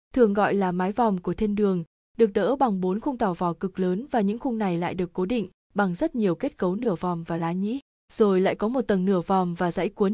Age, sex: 20-39, female